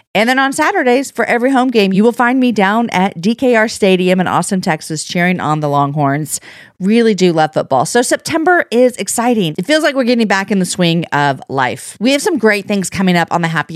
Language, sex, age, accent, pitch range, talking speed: English, female, 40-59, American, 165-225 Hz, 225 wpm